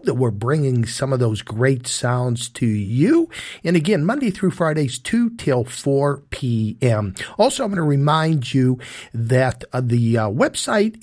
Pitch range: 125-170 Hz